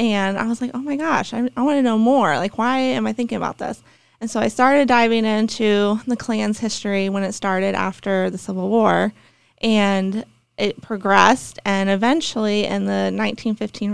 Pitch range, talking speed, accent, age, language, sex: 190-225 Hz, 185 wpm, American, 20-39, English, female